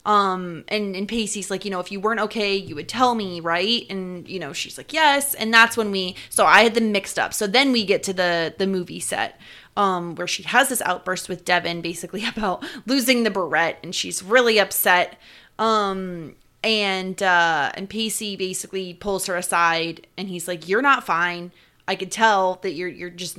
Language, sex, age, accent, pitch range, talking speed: English, female, 20-39, American, 180-235 Hz, 205 wpm